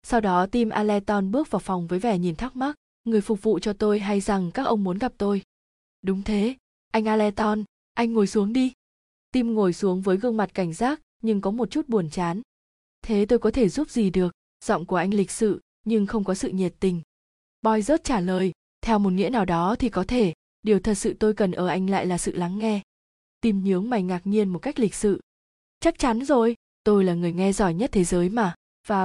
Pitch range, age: 190-230 Hz, 20-39